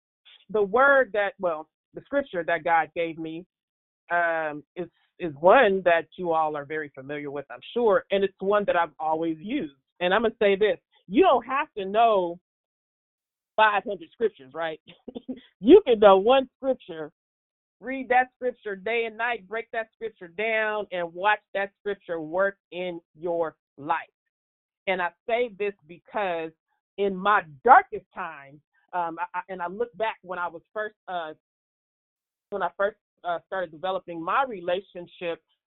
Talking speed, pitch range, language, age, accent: 160 wpm, 170-215 Hz, English, 40-59, American